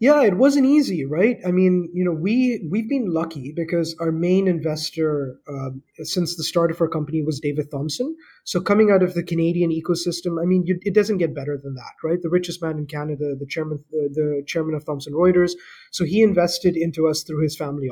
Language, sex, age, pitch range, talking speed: English, male, 30-49, 155-185 Hz, 220 wpm